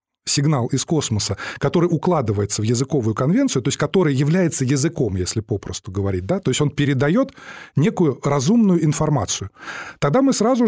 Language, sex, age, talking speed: Russian, male, 20-39, 145 wpm